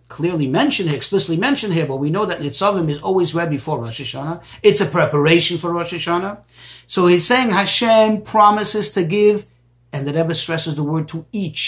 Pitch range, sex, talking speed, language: 160-215 Hz, male, 190 wpm, English